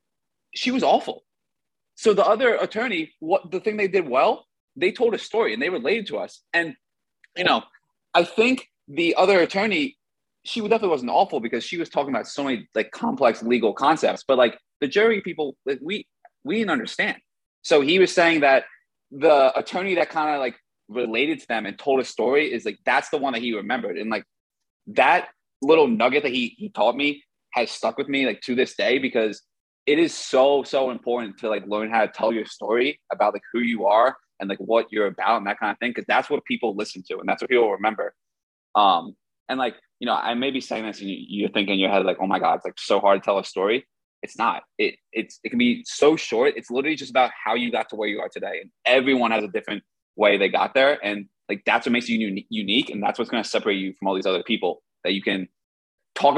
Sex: male